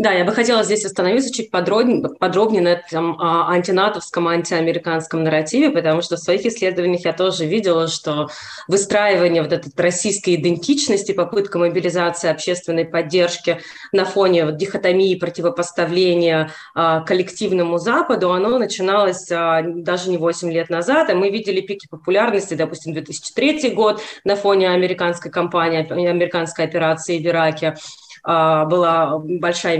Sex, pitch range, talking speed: female, 165-200 Hz, 135 wpm